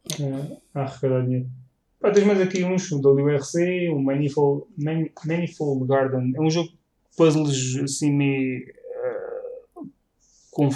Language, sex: Portuguese, male